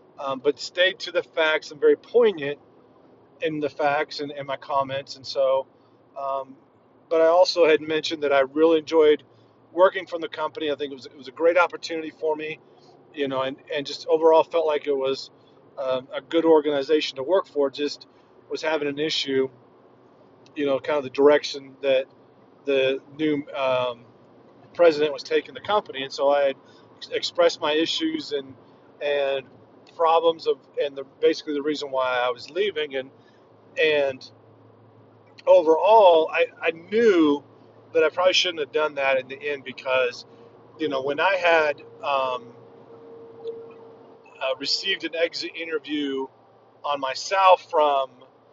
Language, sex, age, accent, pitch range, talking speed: English, male, 40-59, American, 135-165 Hz, 165 wpm